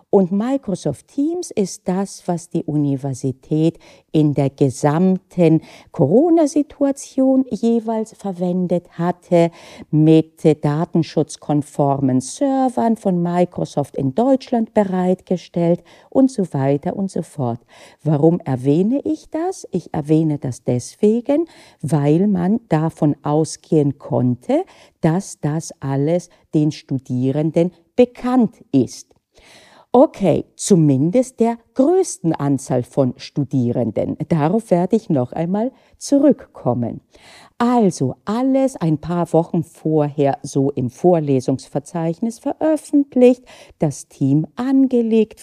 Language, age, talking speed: German, 50-69, 100 wpm